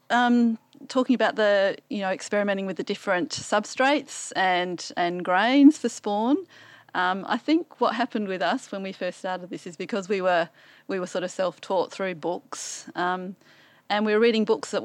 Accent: Australian